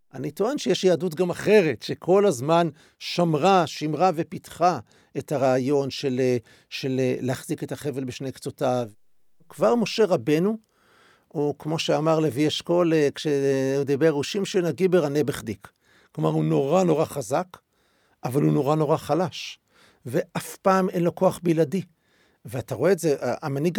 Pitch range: 135-180 Hz